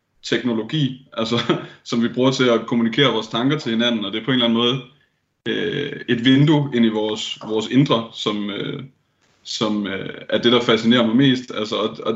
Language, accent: Danish, native